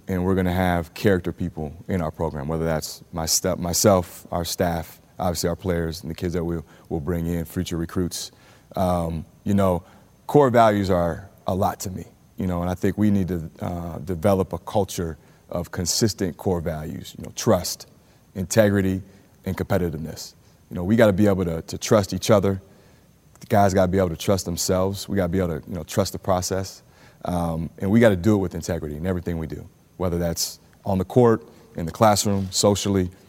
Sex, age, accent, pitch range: male, 30-49, American, 85-100 Hz